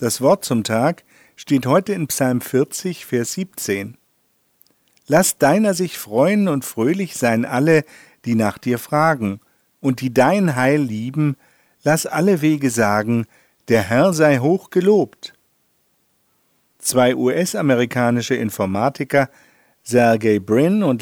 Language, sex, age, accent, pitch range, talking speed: German, male, 50-69, German, 115-155 Hz, 120 wpm